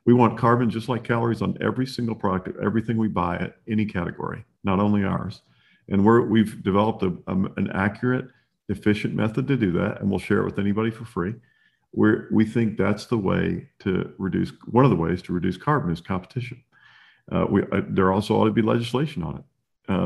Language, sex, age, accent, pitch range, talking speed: English, male, 50-69, American, 100-120 Hz, 210 wpm